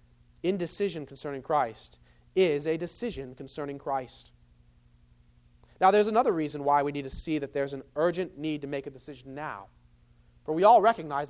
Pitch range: 130-190 Hz